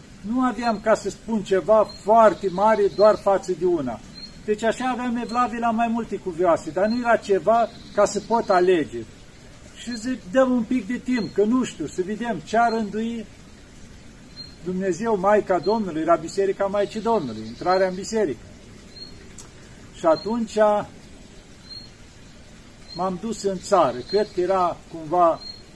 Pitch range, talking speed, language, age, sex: 175-220 Hz, 145 wpm, Romanian, 50-69, male